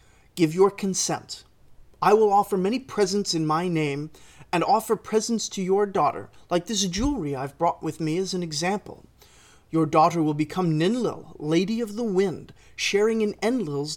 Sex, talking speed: male, 170 wpm